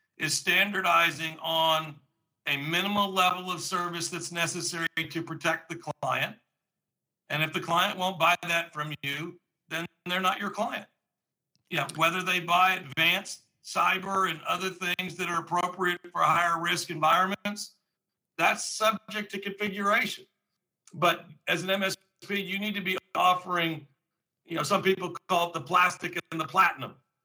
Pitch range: 170-190 Hz